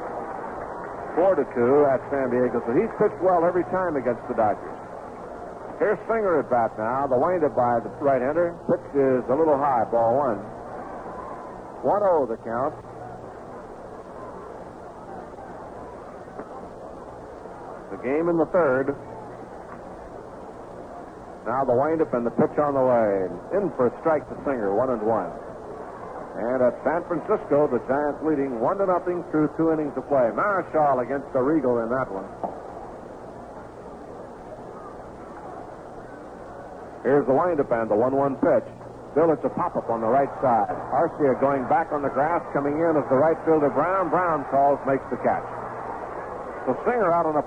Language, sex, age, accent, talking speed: English, male, 60-79, American, 145 wpm